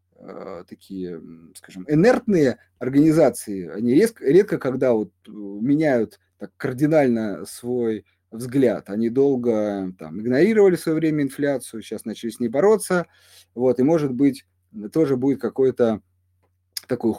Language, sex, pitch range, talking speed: Russian, male, 110-160 Hz, 120 wpm